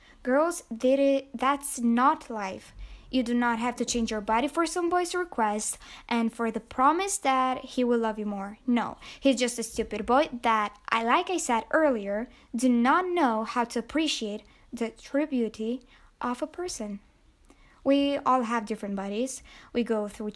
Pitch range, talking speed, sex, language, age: 225-280 Hz, 175 wpm, female, English, 10-29